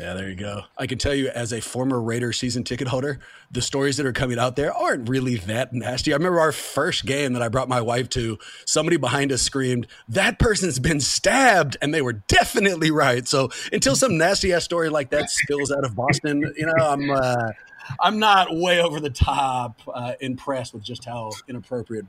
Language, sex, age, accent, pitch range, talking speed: English, male, 30-49, American, 125-155 Hz, 205 wpm